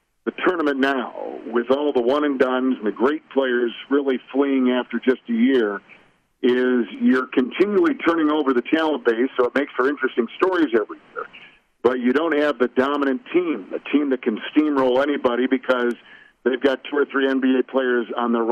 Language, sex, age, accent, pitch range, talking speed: English, male, 50-69, American, 125-145 Hz, 180 wpm